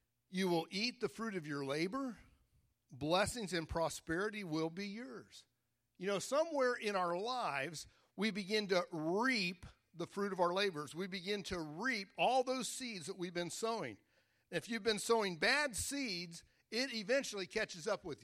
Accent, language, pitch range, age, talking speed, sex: American, English, 155-205 Hz, 50-69, 170 wpm, male